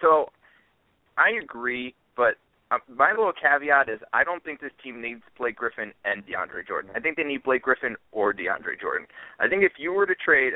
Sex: male